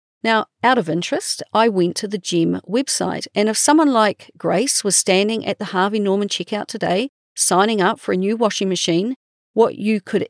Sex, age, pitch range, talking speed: female, 40-59, 180-225 Hz, 190 wpm